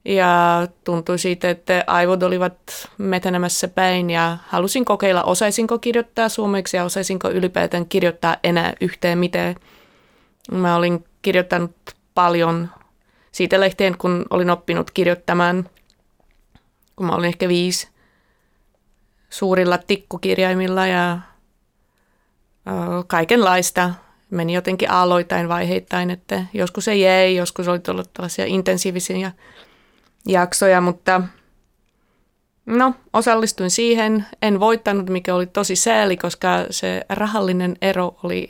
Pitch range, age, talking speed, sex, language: 175-195 Hz, 20-39, 110 wpm, female, Finnish